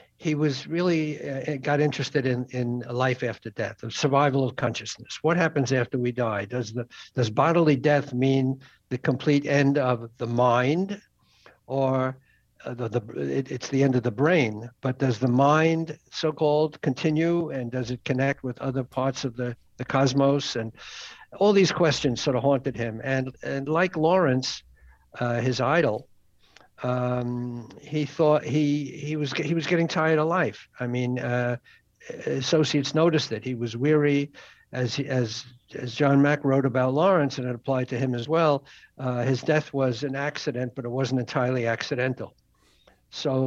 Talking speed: 170 wpm